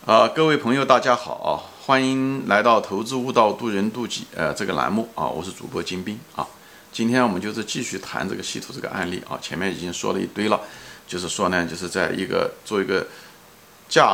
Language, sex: Chinese, male